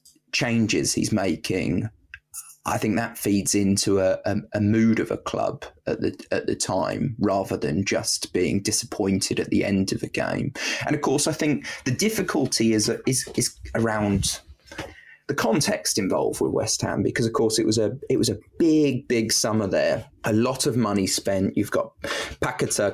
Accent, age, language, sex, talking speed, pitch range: British, 20-39, English, male, 180 wpm, 100-125 Hz